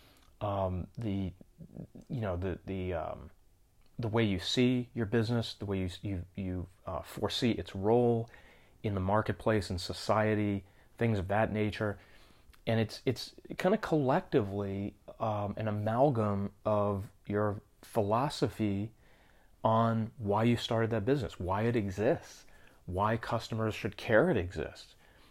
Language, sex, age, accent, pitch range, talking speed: English, male, 30-49, American, 100-120 Hz, 140 wpm